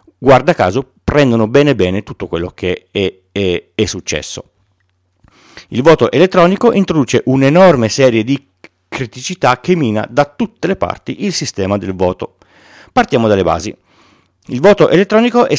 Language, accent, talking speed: Italian, native, 140 wpm